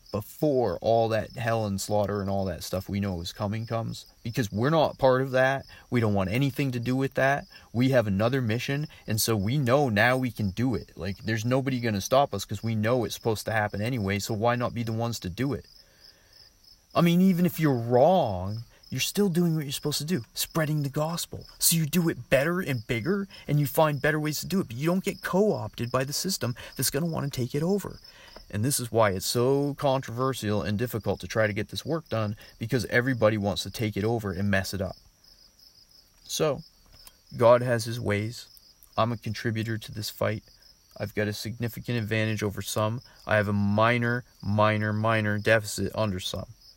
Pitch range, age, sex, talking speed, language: 105-130 Hz, 30-49, male, 215 wpm, English